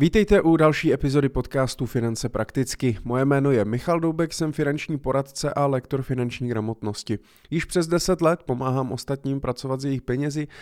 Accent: native